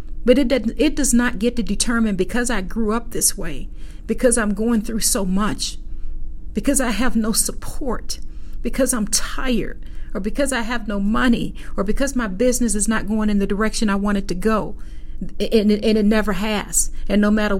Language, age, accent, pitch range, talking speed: English, 50-69, American, 185-225 Hz, 190 wpm